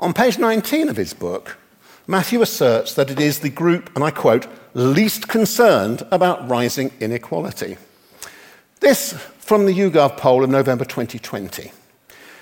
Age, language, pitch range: 50-69, English, 125-210 Hz